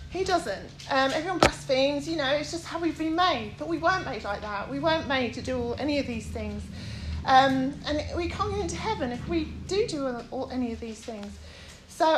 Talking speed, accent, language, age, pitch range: 215 wpm, British, English, 30-49, 230-280 Hz